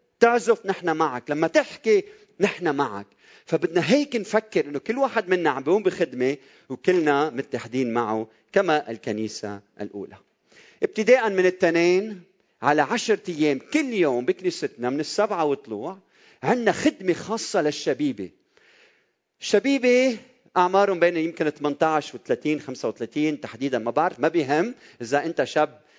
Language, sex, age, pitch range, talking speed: Arabic, male, 40-59, 145-215 Hz, 125 wpm